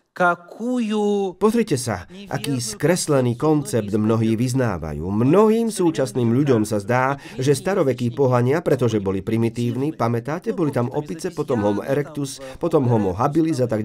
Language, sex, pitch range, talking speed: Slovak, male, 115-165 Hz, 130 wpm